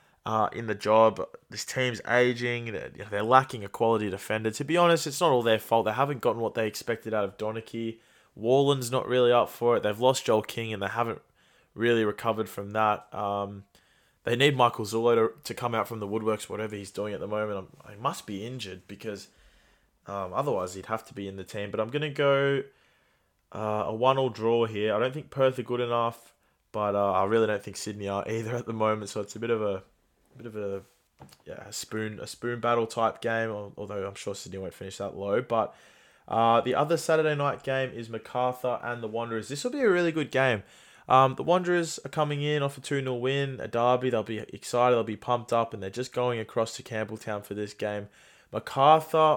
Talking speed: 220 wpm